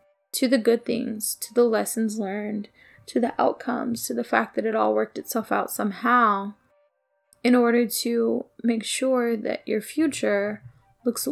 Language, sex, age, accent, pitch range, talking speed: English, female, 20-39, American, 210-245 Hz, 160 wpm